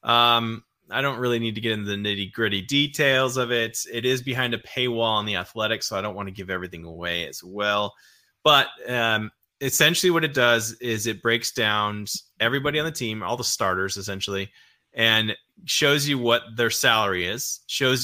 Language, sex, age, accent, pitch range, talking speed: English, male, 20-39, American, 105-130 Hz, 190 wpm